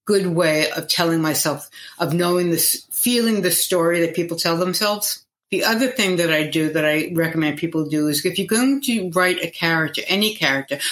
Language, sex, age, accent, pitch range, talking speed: English, female, 60-79, American, 150-185 Hz, 200 wpm